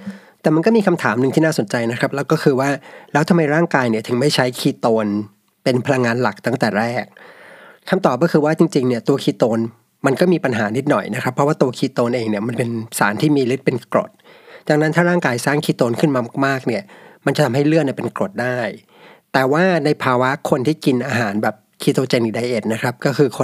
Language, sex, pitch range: Thai, male, 120-155 Hz